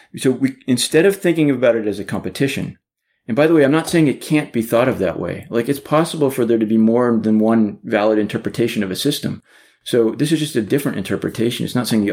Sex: male